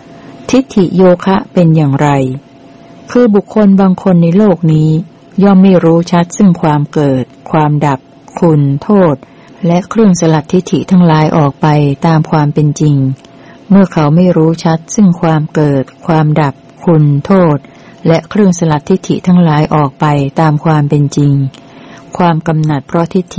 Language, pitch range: Thai, 145-180 Hz